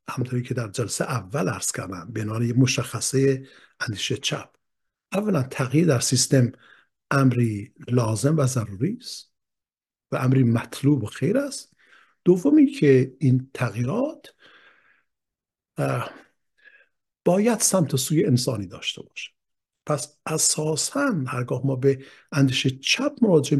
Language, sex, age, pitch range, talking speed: Persian, male, 60-79, 120-155 Hz, 115 wpm